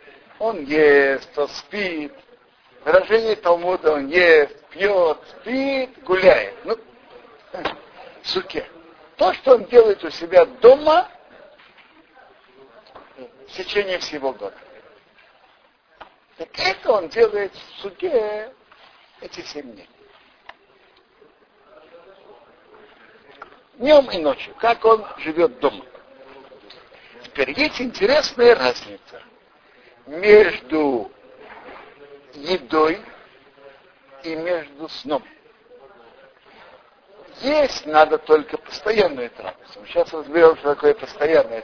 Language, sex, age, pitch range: Russian, male, 60-79, 155-250 Hz